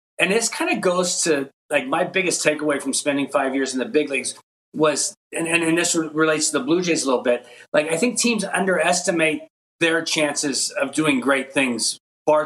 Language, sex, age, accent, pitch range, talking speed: English, male, 40-59, American, 140-180 Hz, 200 wpm